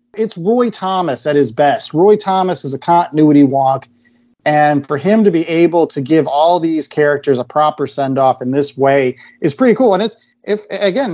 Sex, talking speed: male, 195 wpm